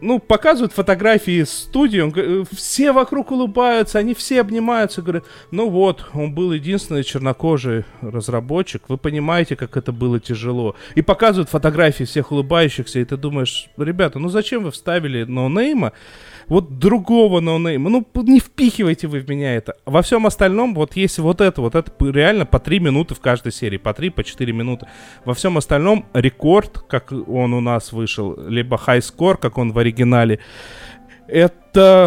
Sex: male